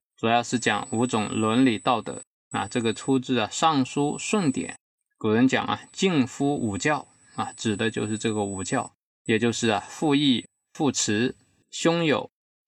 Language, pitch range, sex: Chinese, 110-140 Hz, male